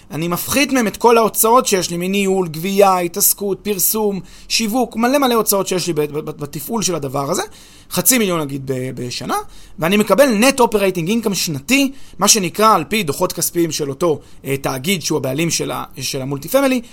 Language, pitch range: Hebrew, 160-220 Hz